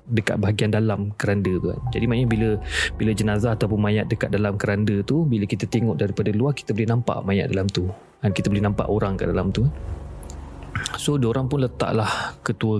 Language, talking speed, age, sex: Malay, 190 wpm, 30-49, male